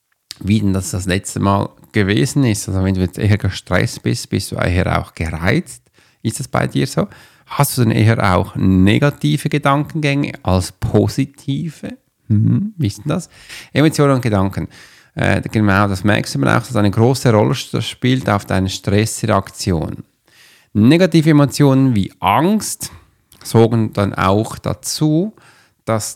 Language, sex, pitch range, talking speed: German, male, 95-140 Hz, 145 wpm